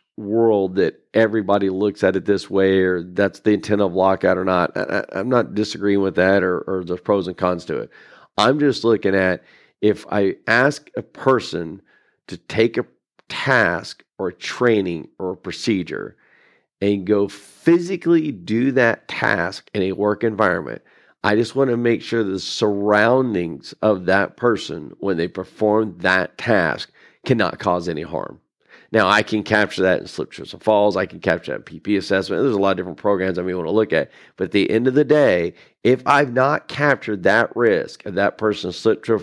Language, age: English, 50-69